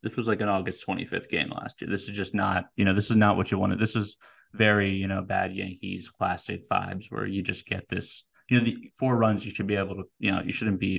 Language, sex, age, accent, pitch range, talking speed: English, male, 20-39, American, 95-115 Hz, 275 wpm